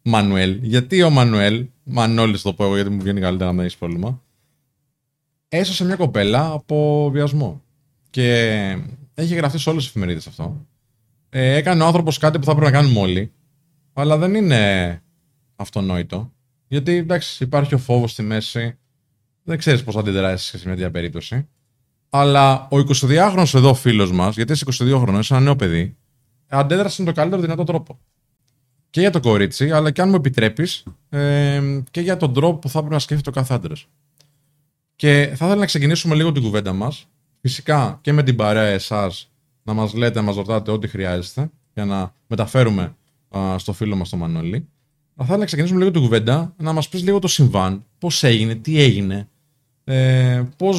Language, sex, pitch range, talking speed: Greek, male, 110-150 Hz, 180 wpm